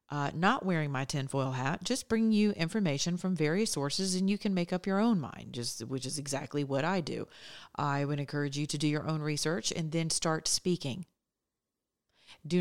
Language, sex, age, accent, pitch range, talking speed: English, female, 40-59, American, 145-180 Hz, 200 wpm